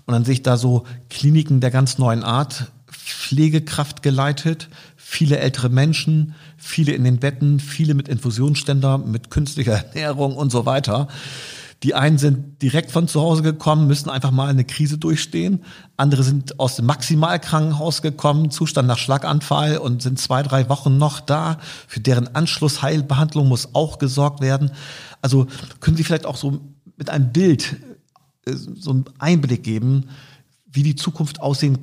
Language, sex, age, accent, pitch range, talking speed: German, male, 50-69, German, 130-155 Hz, 155 wpm